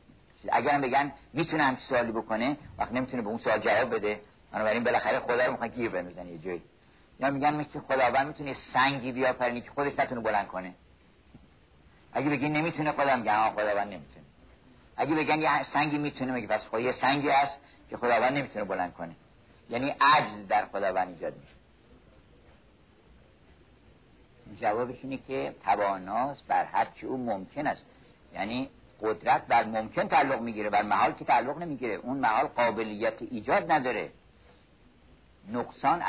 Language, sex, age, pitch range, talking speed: Persian, male, 50-69, 110-140 Hz, 145 wpm